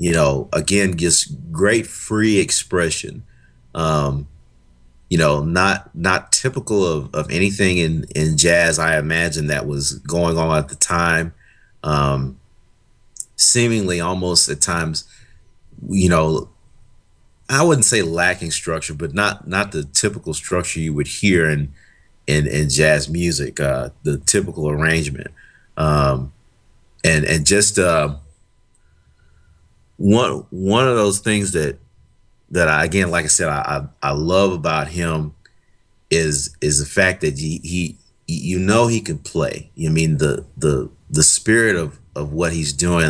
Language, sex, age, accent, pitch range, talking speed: English, male, 30-49, American, 75-95 Hz, 145 wpm